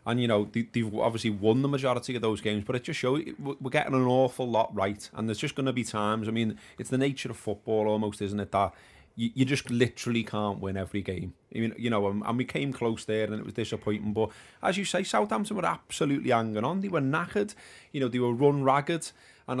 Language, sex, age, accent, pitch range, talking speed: English, male, 30-49, British, 105-130 Hz, 240 wpm